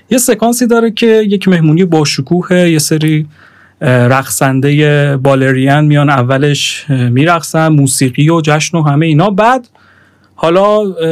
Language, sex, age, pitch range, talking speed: Persian, male, 30-49, 140-170 Hz, 125 wpm